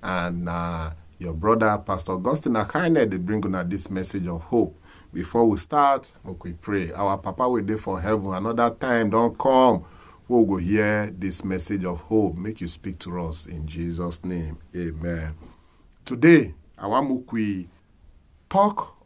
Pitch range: 85-140 Hz